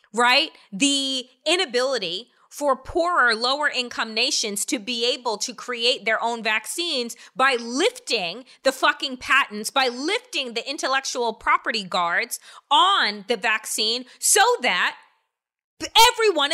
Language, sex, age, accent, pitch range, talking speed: English, female, 20-39, American, 250-385 Hz, 120 wpm